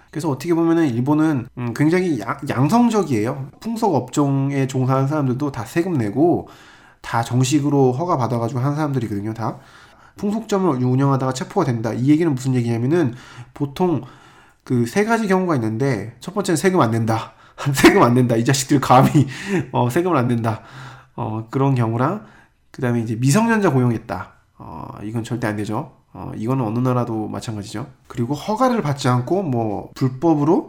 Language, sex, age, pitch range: Korean, male, 20-39, 115-150 Hz